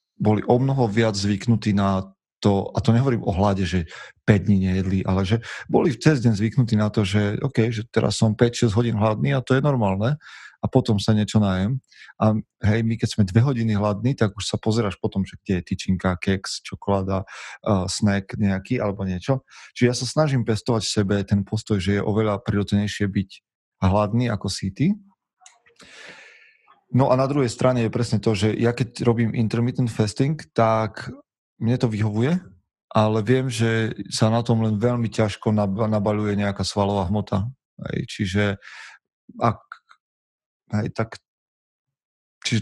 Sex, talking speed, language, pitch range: male, 165 wpm, Slovak, 100-120 Hz